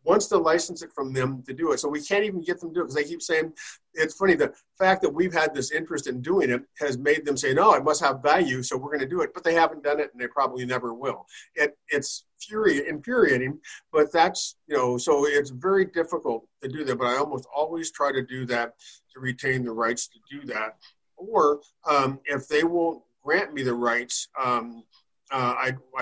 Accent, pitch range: American, 125-150 Hz